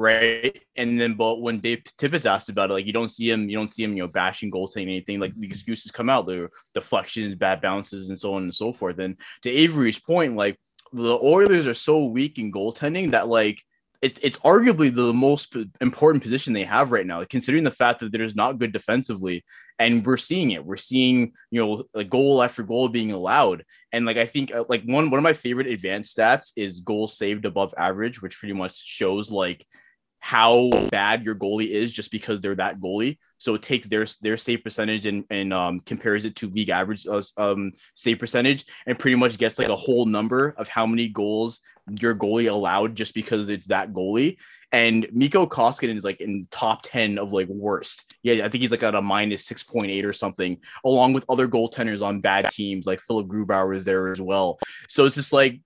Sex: male